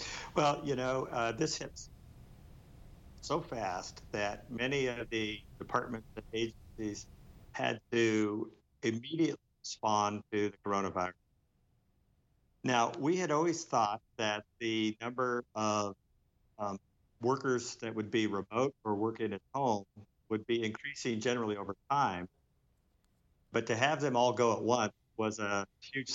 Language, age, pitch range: English, 50-69, 105-120 Hz